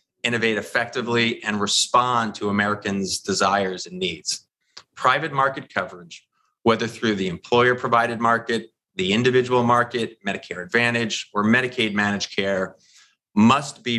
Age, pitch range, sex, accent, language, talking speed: 30-49, 100-120 Hz, male, American, English, 115 wpm